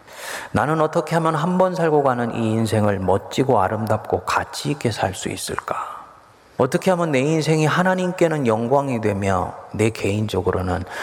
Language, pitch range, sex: Korean, 120-175 Hz, male